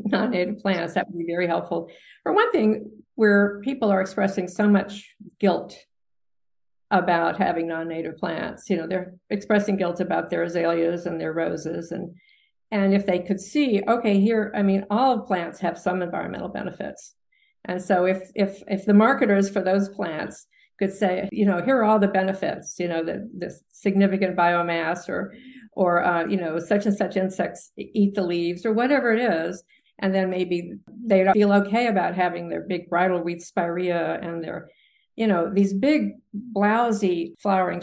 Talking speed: 175 wpm